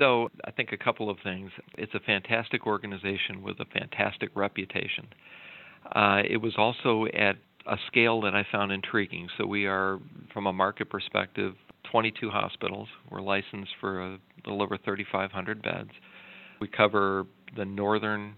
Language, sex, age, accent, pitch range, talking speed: English, male, 50-69, American, 100-105 Hz, 155 wpm